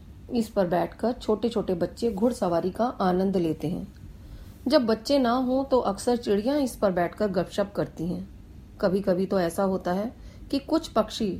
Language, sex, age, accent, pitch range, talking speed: Hindi, female, 40-59, native, 175-235 Hz, 175 wpm